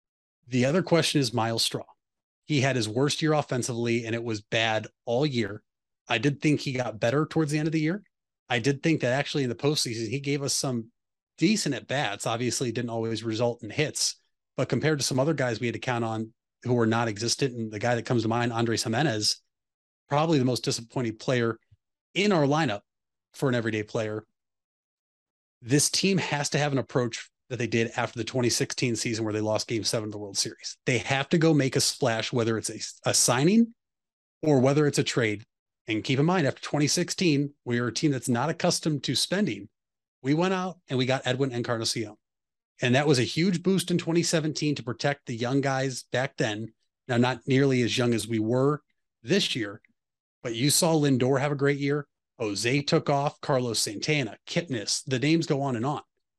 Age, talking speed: 30-49, 210 wpm